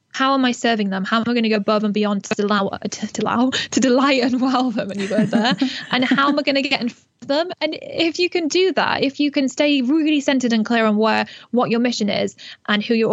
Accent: British